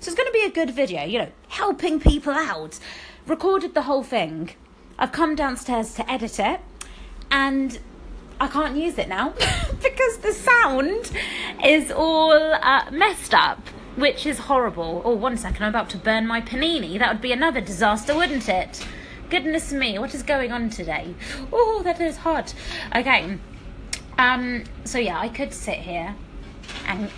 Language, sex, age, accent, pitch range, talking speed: English, female, 30-49, British, 200-285 Hz, 165 wpm